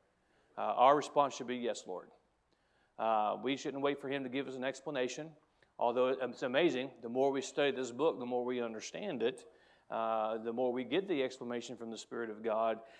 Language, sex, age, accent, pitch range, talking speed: English, male, 40-59, American, 115-130 Hz, 205 wpm